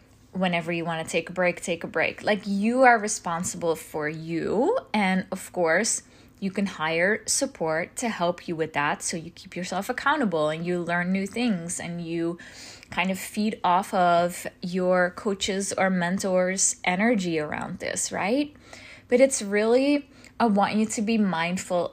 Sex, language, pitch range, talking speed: female, English, 170-220 Hz, 170 wpm